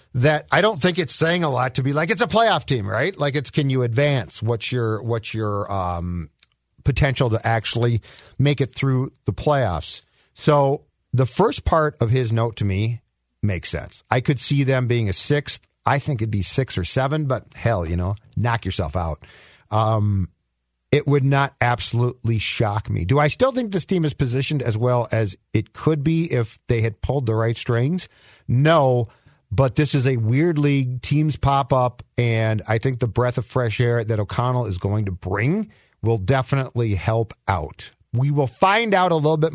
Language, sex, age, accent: English, male, 50-69, American